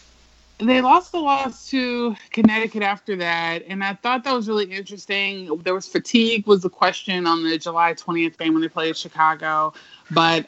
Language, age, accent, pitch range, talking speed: English, 30-49, American, 165-195 Hz, 180 wpm